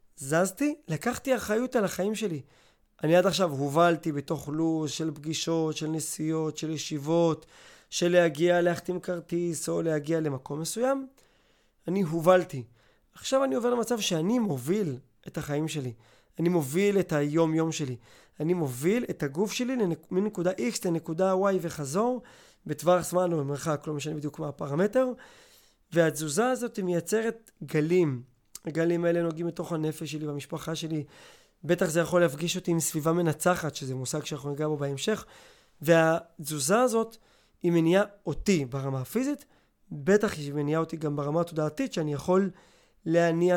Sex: male